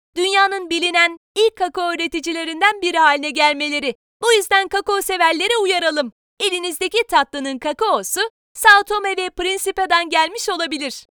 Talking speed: 115 wpm